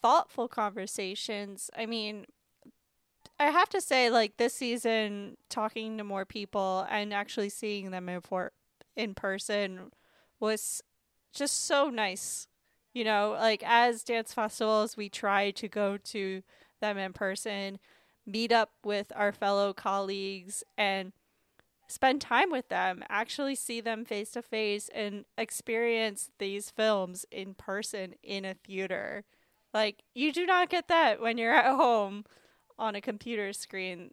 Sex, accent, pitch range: female, American, 200-245 Hz